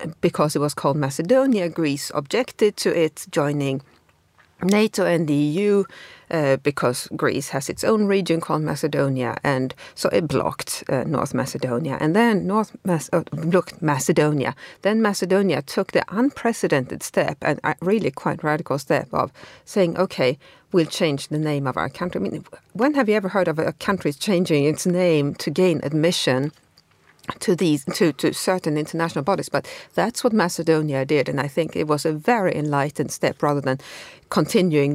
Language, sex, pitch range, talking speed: English, female, 145-190 Hz, 170 wpm